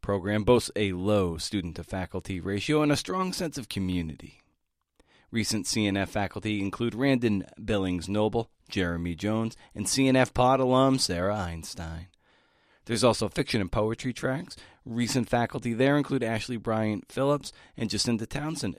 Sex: male